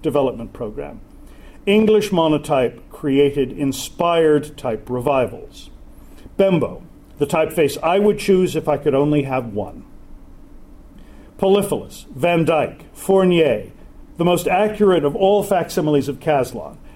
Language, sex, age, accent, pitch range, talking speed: English, male, 50-69, American, 145-180 Hz, 115 wpm